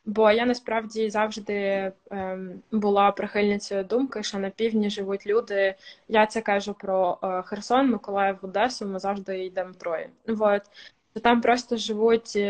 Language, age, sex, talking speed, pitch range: Ukrainian, 20-39, female, 125 wpm, 200-240 Hz